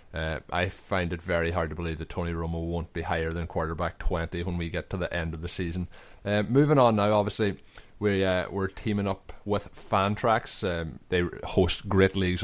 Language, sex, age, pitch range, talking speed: English, male, 20-39, 90-100 Hz, 210 wpm